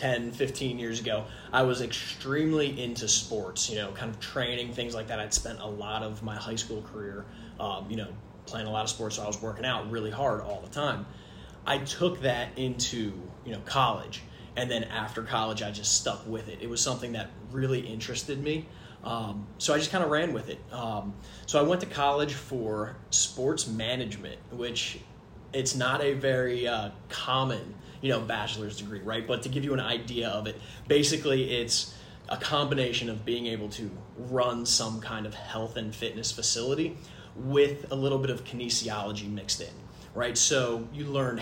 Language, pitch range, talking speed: English, 110-130 Hz, 195 wpm